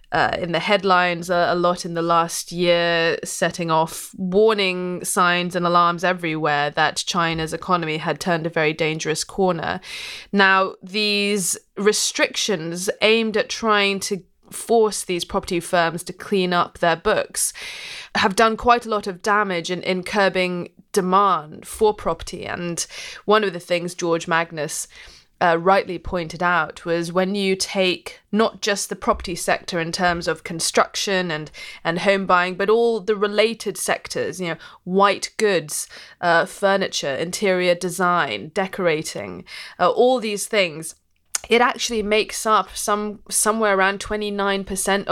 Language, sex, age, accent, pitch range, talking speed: English, female, 20-39, British, 175-210 Hz, 145 wpm